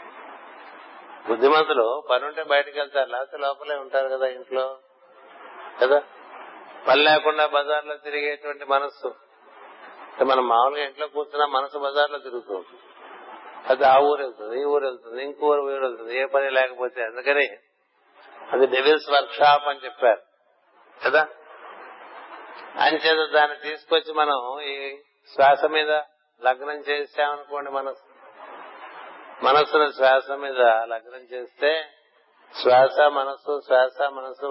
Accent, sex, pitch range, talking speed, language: native, male, 130-150 Hz, 105 wpm, Telugu